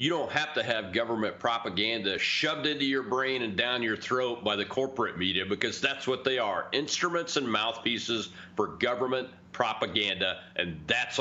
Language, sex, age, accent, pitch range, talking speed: English, male, 40-59, American, 105-130 Hz, 170 wpm